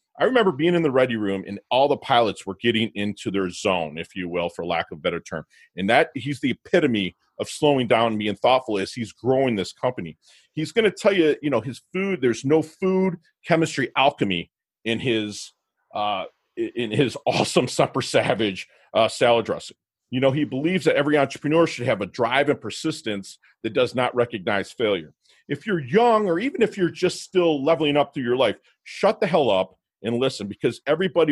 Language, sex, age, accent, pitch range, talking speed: English, male, 40-59, American, 115-160 Hz, 200 wpm